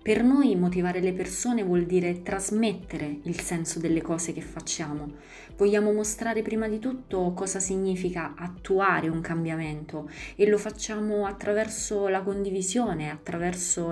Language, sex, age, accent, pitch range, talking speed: Italian, female, 20-39, native, 165-210 Hz, 135 wpm